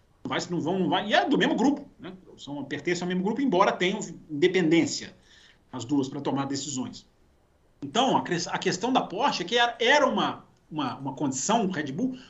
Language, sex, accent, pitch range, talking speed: Portuguese, male, Brazilian, 155-240 Hz, 195 wpm